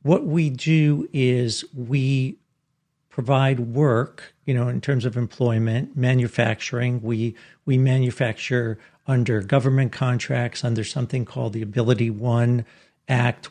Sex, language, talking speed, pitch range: male, English, 120 wpm, 115-135 Hz